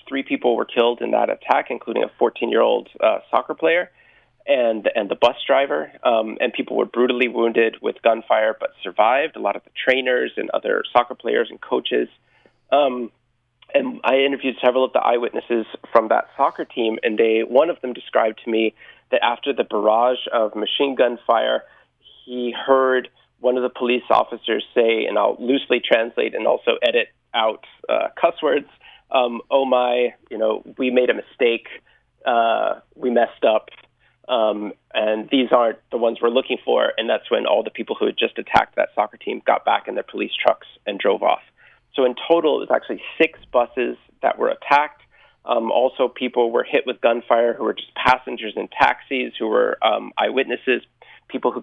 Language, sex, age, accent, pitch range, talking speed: English, male, 30-49, American, 120-140 Hz, 185 wpm